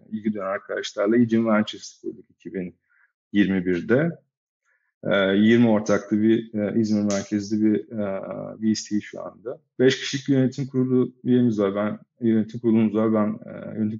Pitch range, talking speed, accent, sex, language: 105-115 Hz, 130 wpm, native, male, Turkish